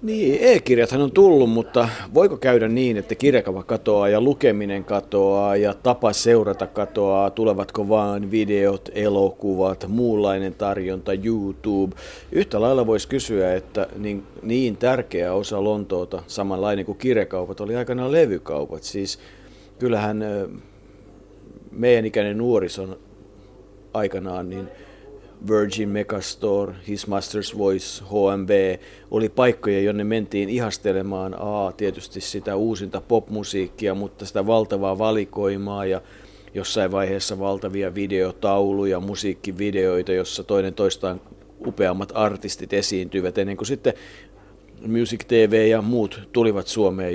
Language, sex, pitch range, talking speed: Finnish, male, 95-110 Hz, 115 wpm